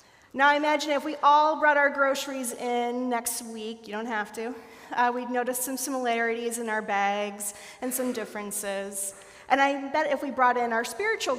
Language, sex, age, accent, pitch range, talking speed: English, female, 30-49, American, 215-260 Hz, 190 wpm